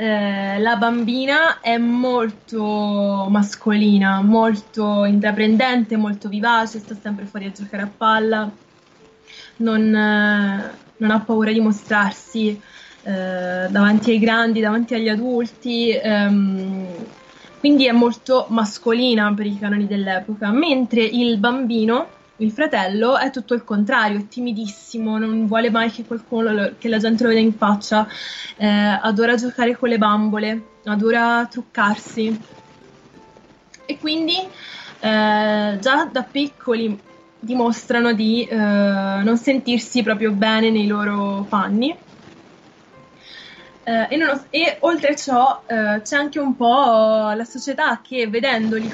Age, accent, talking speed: 20-39, native, 125 wpm